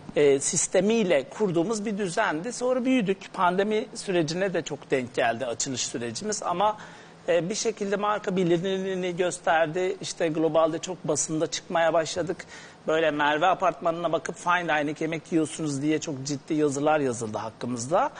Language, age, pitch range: Turkish, 60-79, 155-200 Hz